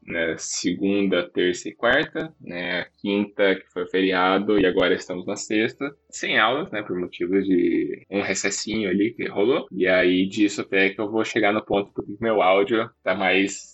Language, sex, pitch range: Portuguese, male, 100-130 Hz